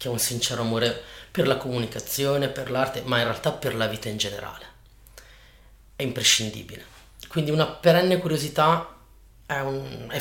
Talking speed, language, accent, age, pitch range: 160 wpm, Italian, native, 30-49, 120-165 Hz